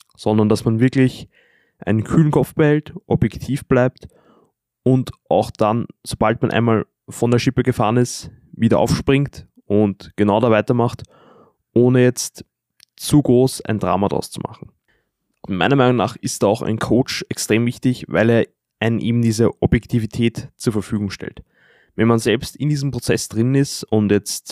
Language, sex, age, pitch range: German, male, 20-39, 110-130 Hz